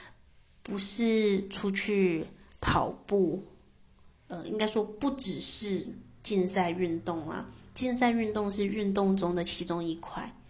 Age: 20-39